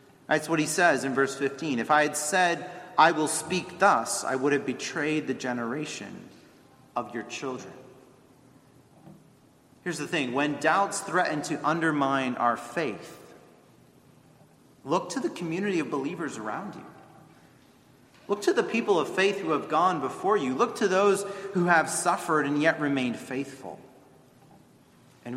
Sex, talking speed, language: male, 150 wpm, English